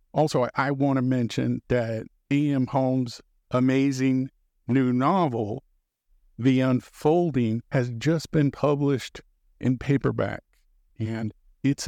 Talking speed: 105 wpm